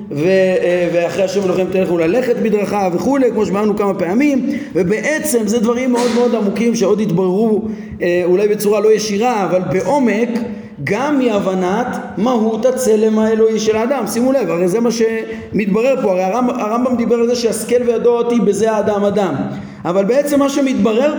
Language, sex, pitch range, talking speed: Hebrew, male, 205-255 Hz, 160 wpm